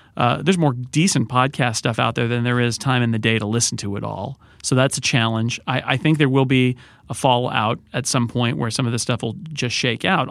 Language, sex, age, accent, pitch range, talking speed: English, male, 40-59, American, 120-145 Hz, 255 wpm